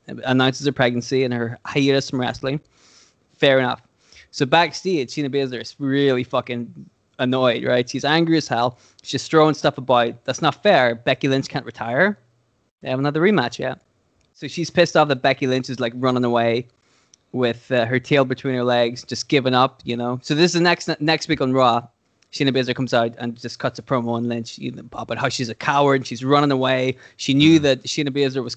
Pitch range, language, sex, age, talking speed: 120-145 Hz, English, male, 20-39, 200 wpm